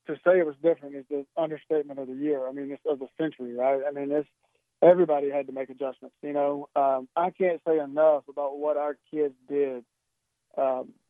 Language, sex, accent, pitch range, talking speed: English, male, American, 140-160 Hz, 210 wpm